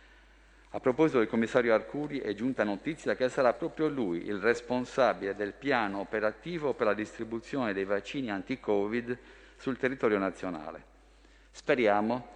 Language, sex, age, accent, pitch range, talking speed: Italian, male, 50-69, native, 105-130 Hz, 130 wpm